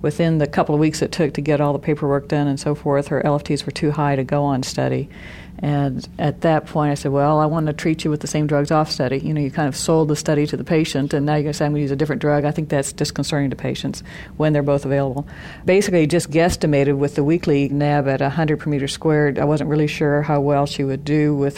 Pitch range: 135-150 Hz